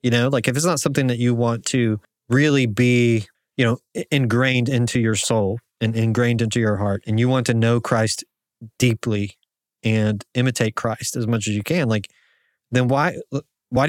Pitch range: 110-130 Hz